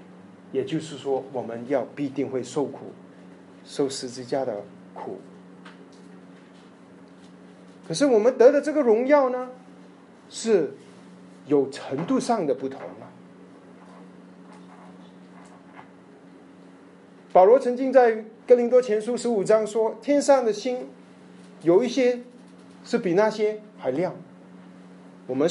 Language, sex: Chinese, male